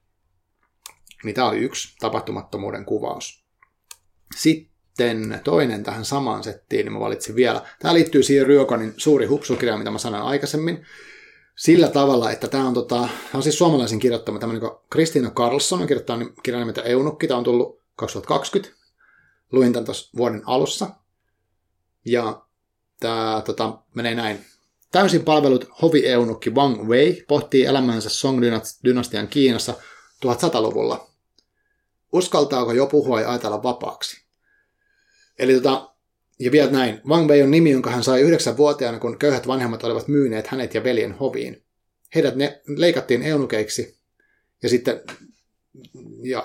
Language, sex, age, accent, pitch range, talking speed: Finnish, male, 30-49, native, 115-145 Hz, 135 wpm